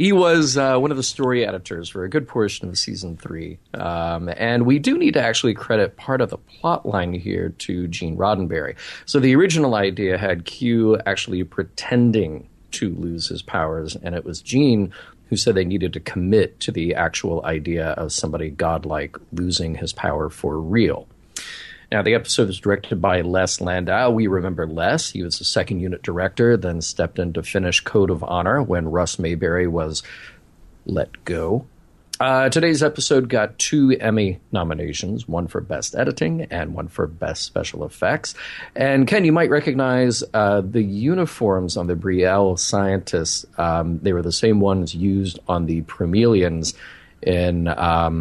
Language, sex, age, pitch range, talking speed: English, male, 40-59, 85-115 Hz, 170 wpm